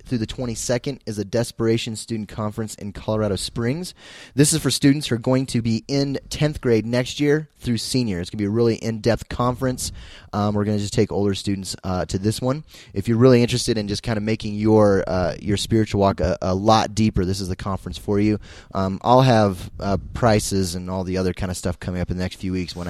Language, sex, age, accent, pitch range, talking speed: English, male, 20-39, American, 105-130 Hz, 240 wpm